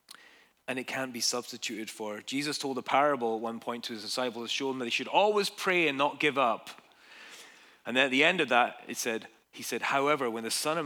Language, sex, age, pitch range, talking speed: English, male, 30-49, 100-120 Hz, 245 wpm